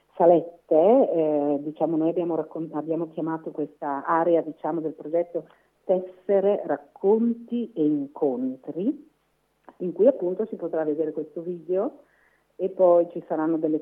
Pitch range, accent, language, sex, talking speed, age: 155-195 Hz, native, Italian, female, 130 wpm, 40-59